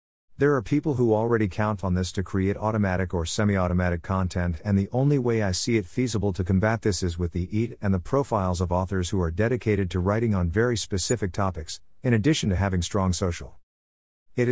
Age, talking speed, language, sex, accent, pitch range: 50-69, 205 wpm, English, male, American, 90-115 Hz